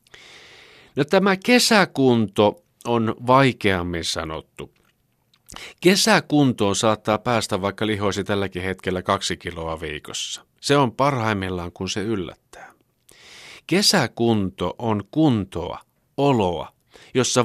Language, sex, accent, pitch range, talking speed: Finnish, male, native, 95-125 Hz, 95 wpm